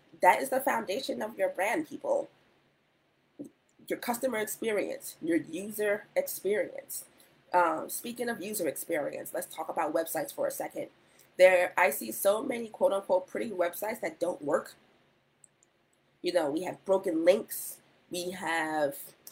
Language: English